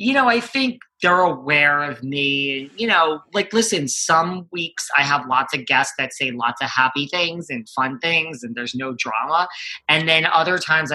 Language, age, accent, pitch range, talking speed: English, 20-39, American, 130-170 Hz, 195 wpm